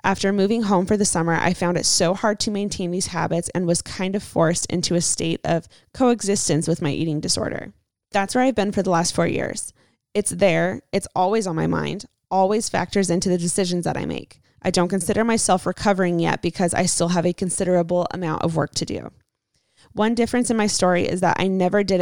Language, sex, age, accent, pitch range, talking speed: English, female, 20-39, American, 170-200 Hz, 220 wpm